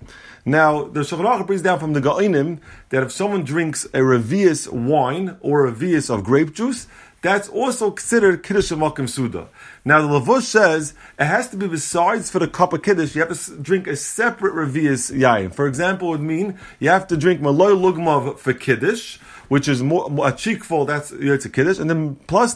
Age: 30-49